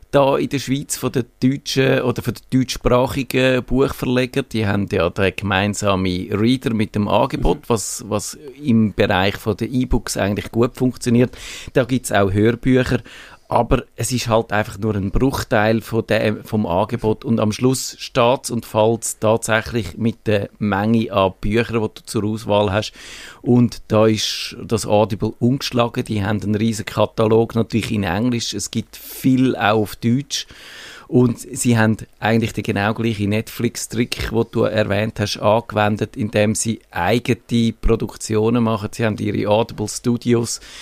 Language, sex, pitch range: German, male, 105-125 Hz